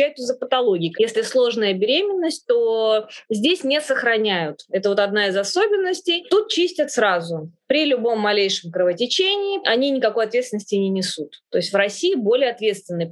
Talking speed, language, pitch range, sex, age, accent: 145 wpm, Russian, 200-275 Hz, female, 20-39, native